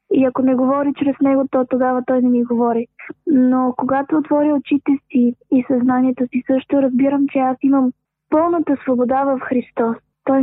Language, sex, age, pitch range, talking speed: Bulgarian, female, 20-39, 245-275 Hz, 175 wpm